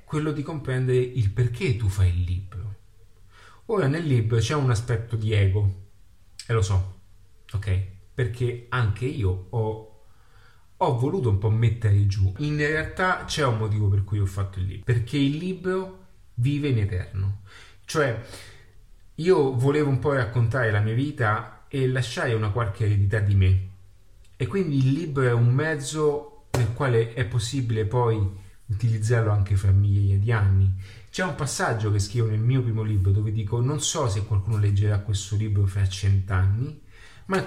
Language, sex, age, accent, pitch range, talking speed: Italian, male, 30-49, native, 100-130 Hz, 165 wpm